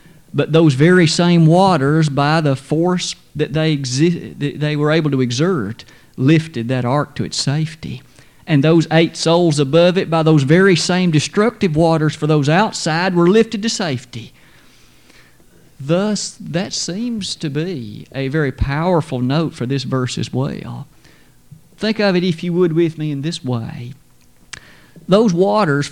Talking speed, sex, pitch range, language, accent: 160 wpm, male, 145-180 Hz, English, American